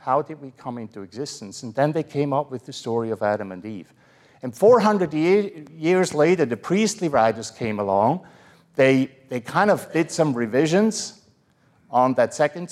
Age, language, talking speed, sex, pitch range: 50-69, English, 175 wpm, male, 110-155 Hz